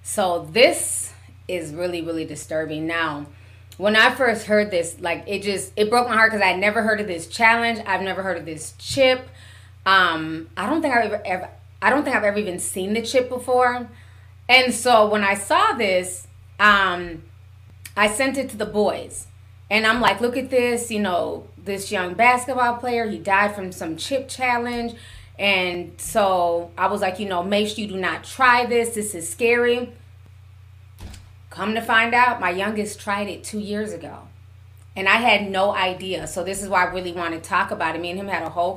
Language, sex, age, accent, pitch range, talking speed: English, female, 20-39, American, 155-215 Hz, 200 wpm